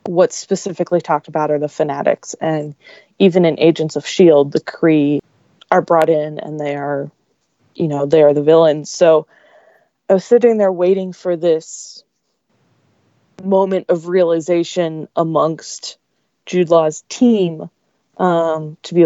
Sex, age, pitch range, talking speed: female, 20-39, 155-180 Hz, 140 wpm